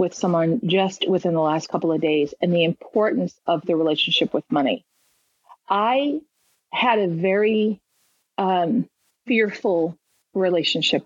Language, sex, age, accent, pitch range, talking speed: English, female, 40-59, American, 170-205 Hz, 130 wpm